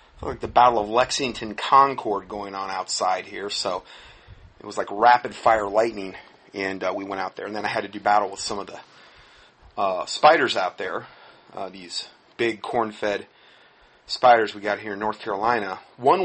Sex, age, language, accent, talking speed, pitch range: male, 30-49, English, American, 185 wpm, 110-140 Hz